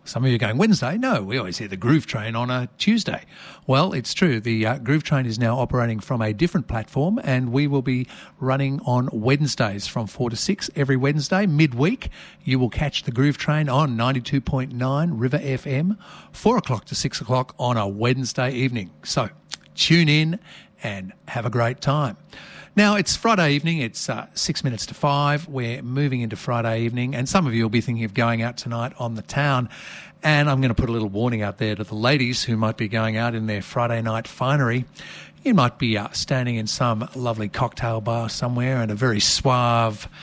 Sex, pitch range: male, 115-145 Hz